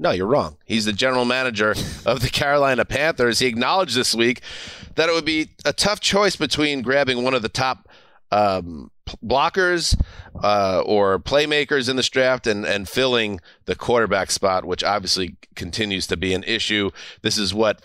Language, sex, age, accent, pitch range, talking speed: English, male, 30-49, American, 100-135 Hz, 175 wpm